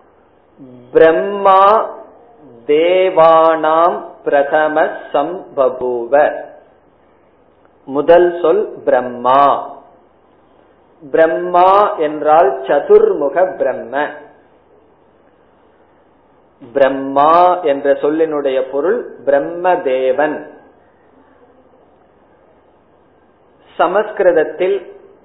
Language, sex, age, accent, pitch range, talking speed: Tamil, male, 40-59, native, 150-200 Hz, 35 wpm